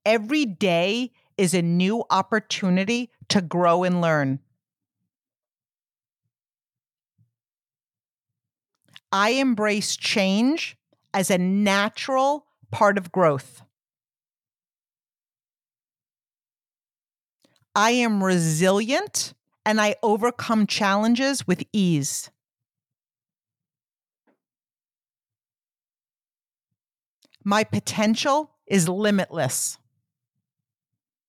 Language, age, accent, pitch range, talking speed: English, 50-69, American, 140-205 Hz, 60 wpm